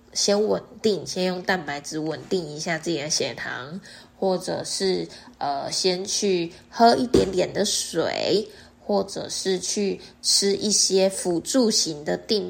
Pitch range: 170-220 Hz